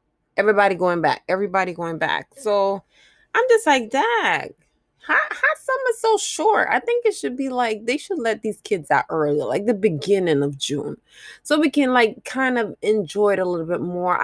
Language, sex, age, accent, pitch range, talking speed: English, female, 20-39, American, 180-230 Hz, 195 wpm